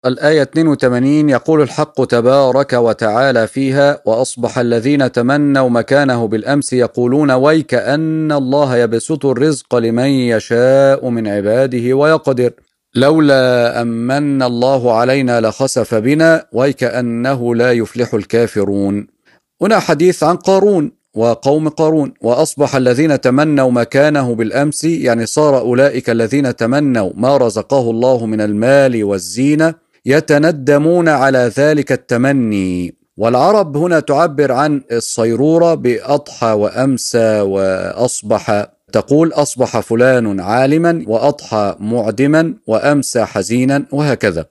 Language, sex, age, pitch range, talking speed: Arabic, male, 40-59, 120-150 Hz, 100 wpm